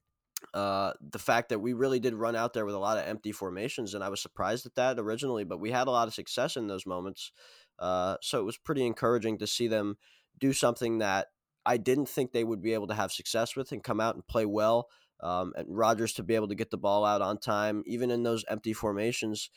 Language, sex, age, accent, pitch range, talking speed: English, male, 20-39, American, 105-120 Hz, 245 wpm